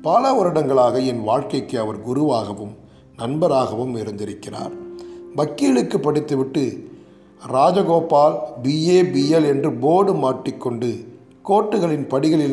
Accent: native